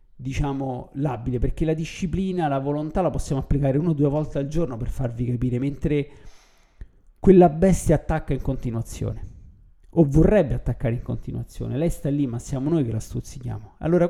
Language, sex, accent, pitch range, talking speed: Italian, male, native, 125-160 Hz, 170 wpm